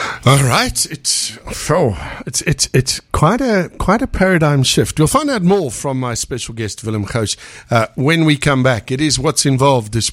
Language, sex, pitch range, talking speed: English, male, 110-150 Hz, 195 wpm